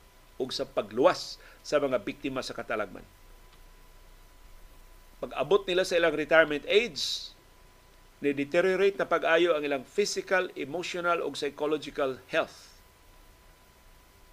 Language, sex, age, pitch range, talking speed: Filipino, male, 50-69, 130-175 Hz, 105 wpm